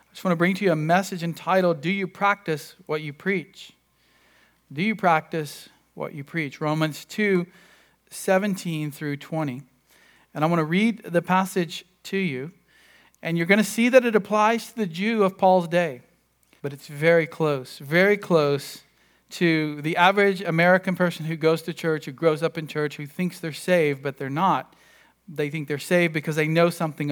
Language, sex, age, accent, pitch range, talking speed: English, male, 40-59, American, 145-190 Hz, 190 wpm